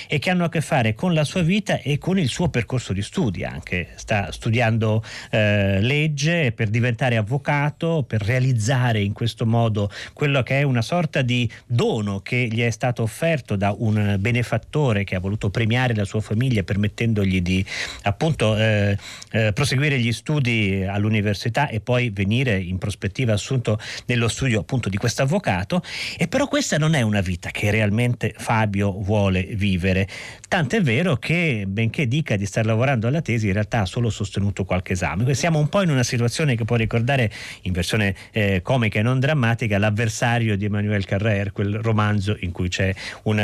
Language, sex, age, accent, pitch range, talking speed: Italian, male, 40-59, native, 105-135 Hz, 175 wpm